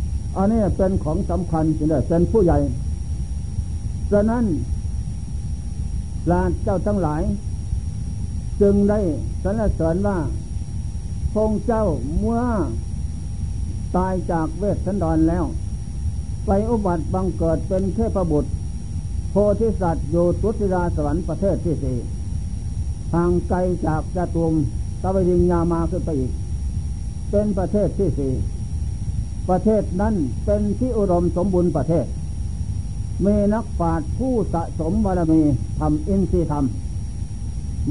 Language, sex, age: Thai, male, 60-79